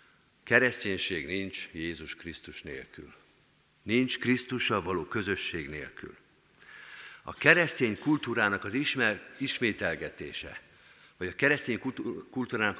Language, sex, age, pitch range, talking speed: Hungarian, male, 50-69, 100-135 Hz, 100 wpm